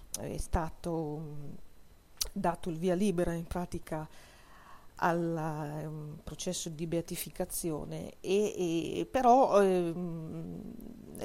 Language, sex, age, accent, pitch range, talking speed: Italian, female, 40-59, native, 160-195 Hz, 85 wpm